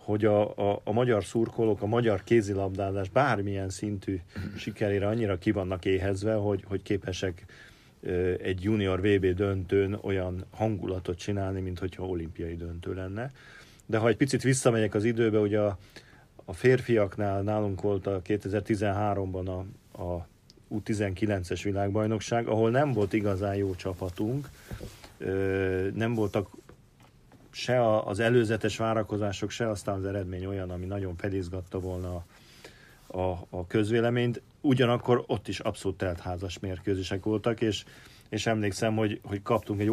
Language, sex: Hungarian, male